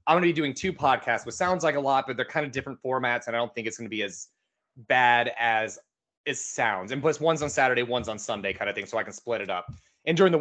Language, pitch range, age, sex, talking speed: English, 120-145 Hz, 30-49, male, 295 wpm